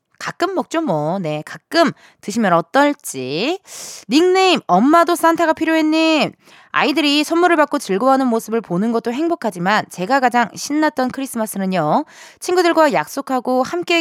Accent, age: native, 20-39